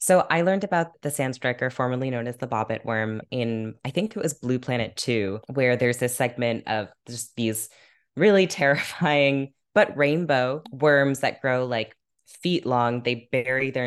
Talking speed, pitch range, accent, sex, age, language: 175 wpm, 110-130 Hz, American, female, 10-29, English